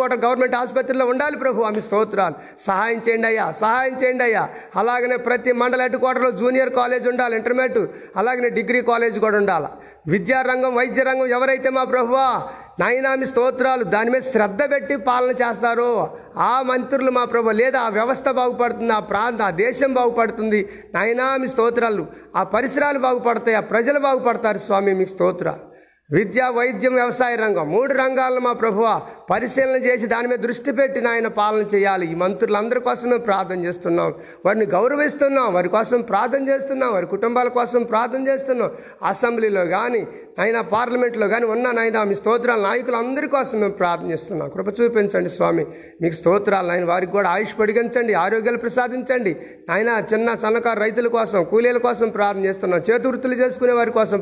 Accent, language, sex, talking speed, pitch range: native, Telugu, male, 145 wpm, 215-255 Hz